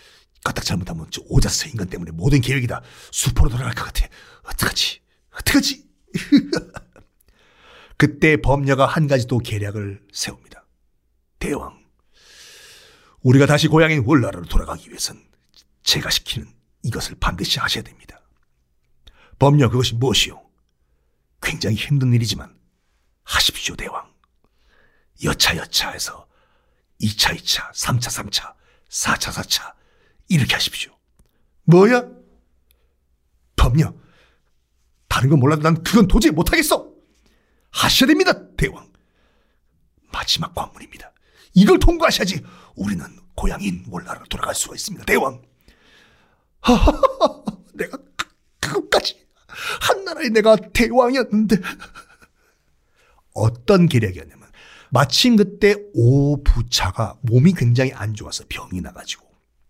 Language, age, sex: Korean, 50-69, male